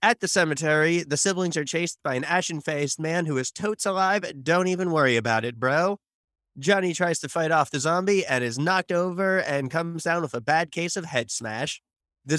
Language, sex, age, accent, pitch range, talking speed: English, male, 30-49, American, 150-190 Hz, 210 wpm